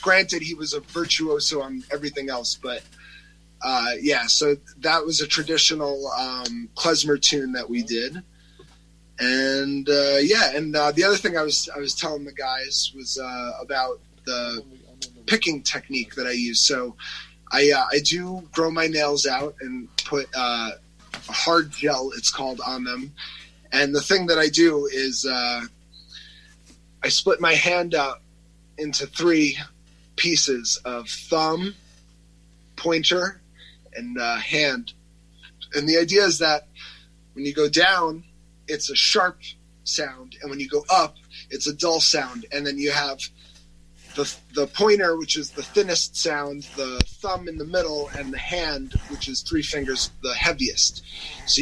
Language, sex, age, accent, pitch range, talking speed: English, male, 20-39, American, 135-165 Hz, 160 wpm